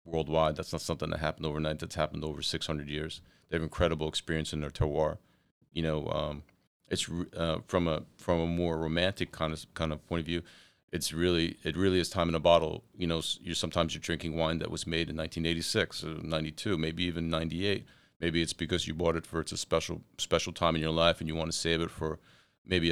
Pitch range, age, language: 80-85 Hz, 40-59, English